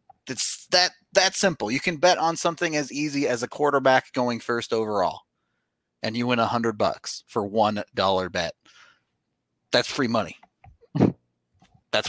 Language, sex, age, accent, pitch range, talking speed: English, male, 30-49, American, 110-175 Hz, 145 wpm